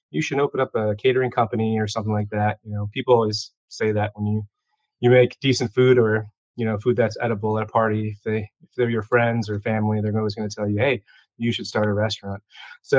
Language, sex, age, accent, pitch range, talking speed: English, male, 20-39, American, 110-125 Hz, 245 wpm